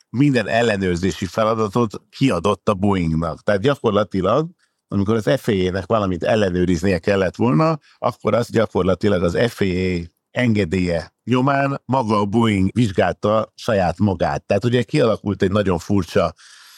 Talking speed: 120 wpm